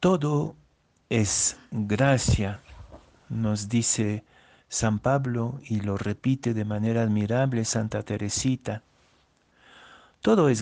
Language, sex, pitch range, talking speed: Spanish, male, 110-135 Hz, 95 wpm